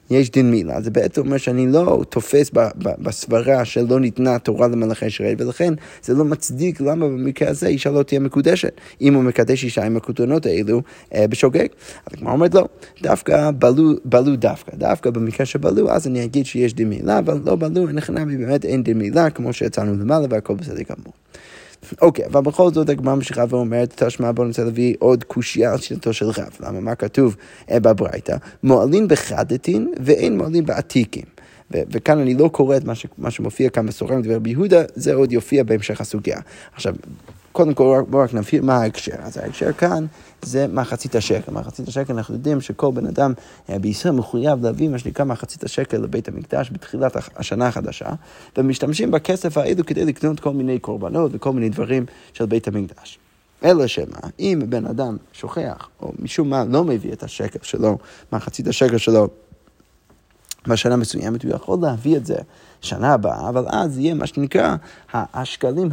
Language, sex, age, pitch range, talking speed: Hebrew, male, 20-39, 115-145 Hz, 180 wpm